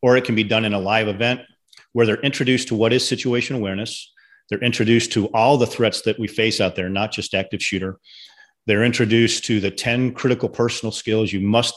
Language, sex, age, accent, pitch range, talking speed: English, male, 40-59, American, 105-125 Hz, 215 wpm